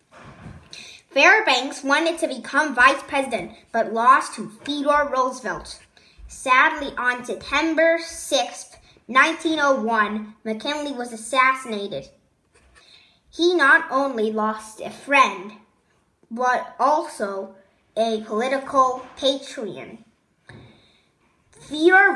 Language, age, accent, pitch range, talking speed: English, 20-39, American, 220-300 Hz, 85 wpm